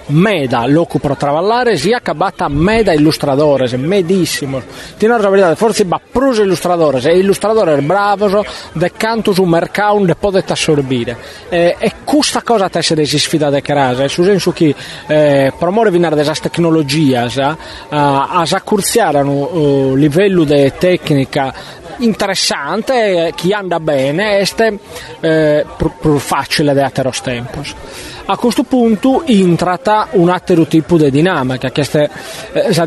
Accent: native